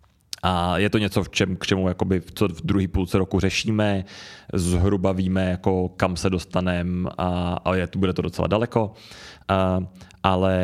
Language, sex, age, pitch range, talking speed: Czech, male, 30-49, 90-100 Hz, 150 wpm